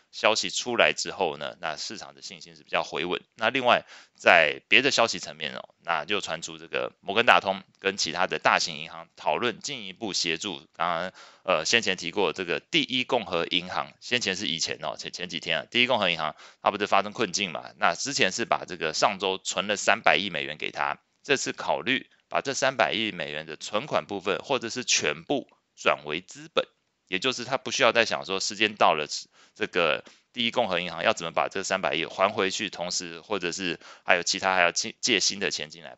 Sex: male